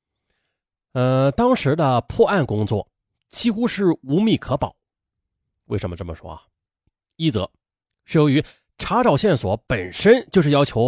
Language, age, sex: Chinese, 30-49, male